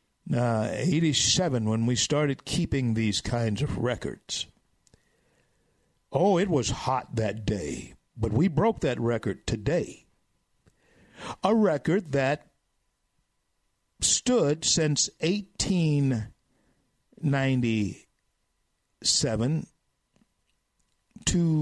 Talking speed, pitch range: 80 wpm, 125-170 Hz